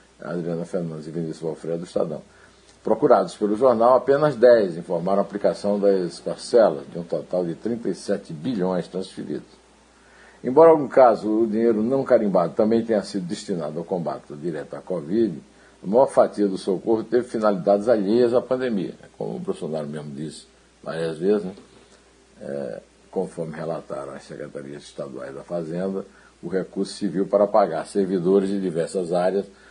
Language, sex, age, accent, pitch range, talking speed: Portuguese, male, 60-79, Brazilian, 85-110 Hz, 150 wpm